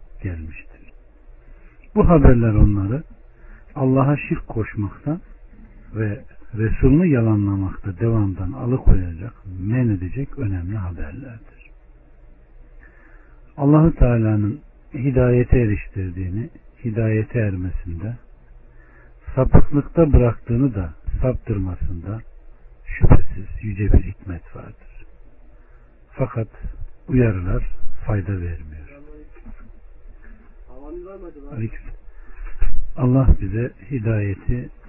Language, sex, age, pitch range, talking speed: Turkish, male, 60-79, 90-130 Hz, 65 wpm